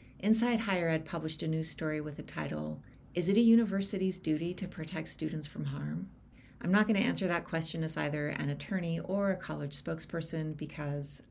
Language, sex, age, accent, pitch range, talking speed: English, female, 40-59, American, 145-180 Hz, 190 wpm